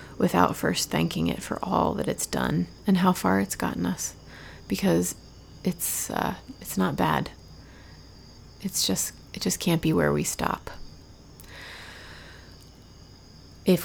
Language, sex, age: English, female, 30-49